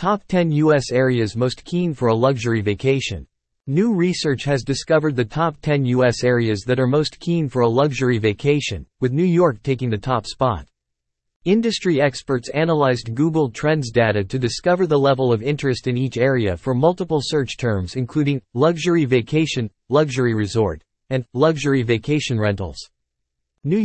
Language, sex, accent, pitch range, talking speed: English, male, American, 115-150 Hz, 160 wpm